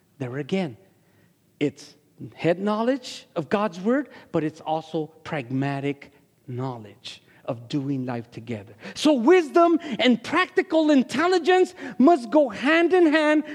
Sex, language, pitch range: male, English, 140-205 Hz